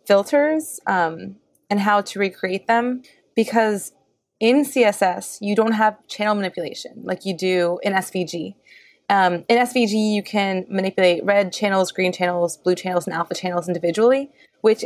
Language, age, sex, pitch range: English, 20-39, female, 180-215 Hz